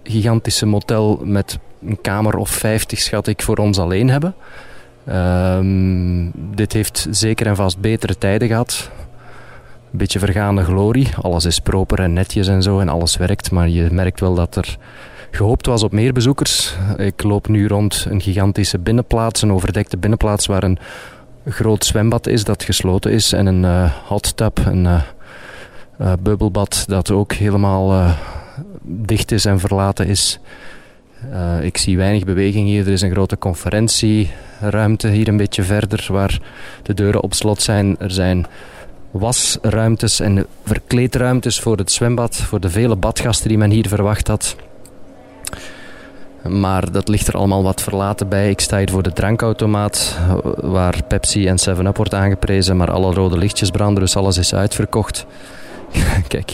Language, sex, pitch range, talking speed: Dutch, male, 95-110 Hz, 160 wpm